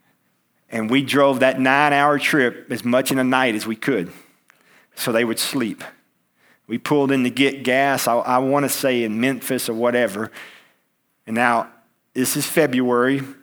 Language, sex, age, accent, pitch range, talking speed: English, male, 40-59, American, 125-145 Hz, 165 wpm